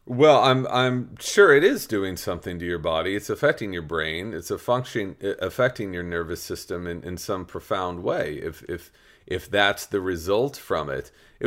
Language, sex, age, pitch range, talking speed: English, male, 40-59, 90-130 Hz, 190 wpm